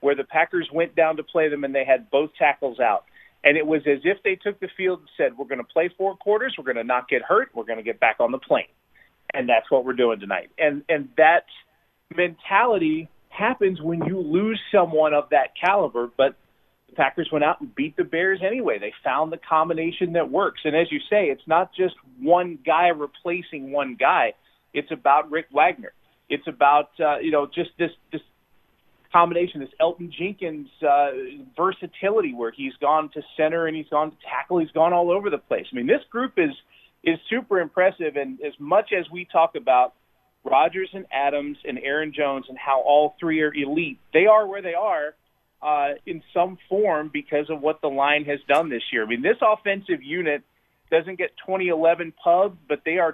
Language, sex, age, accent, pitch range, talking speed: English, male, 40-59, American, 145-185 Hz, 205 wpm